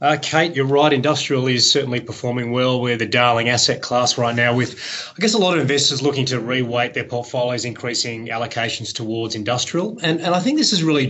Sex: male